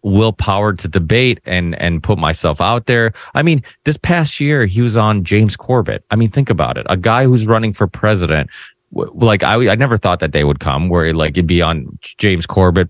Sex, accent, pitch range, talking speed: male, American, 85-105 Hz, 220 wpm